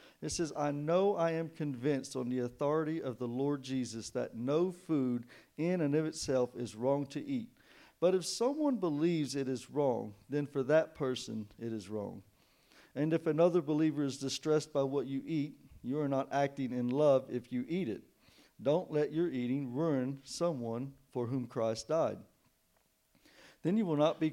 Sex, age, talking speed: male, 50-69, 185 wpm